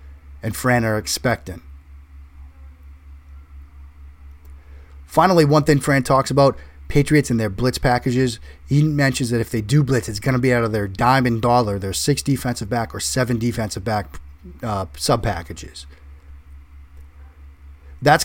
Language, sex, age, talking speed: English, male, 30-49, 140 wpm